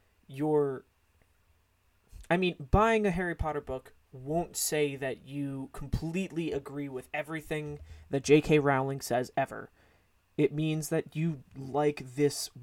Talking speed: 130 wpm